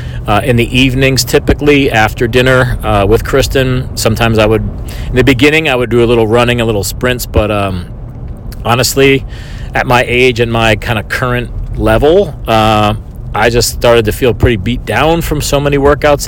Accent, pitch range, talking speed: American, 105-130 Hz, 185 wpm